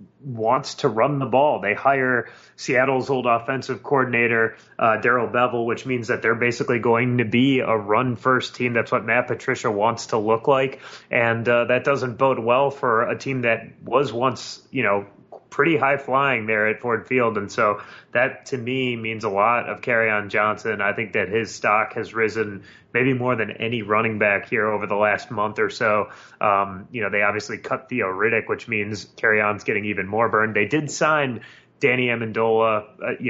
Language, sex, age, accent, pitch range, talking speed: English, male, 30-49, American, 105-125 Hz, 195 wpm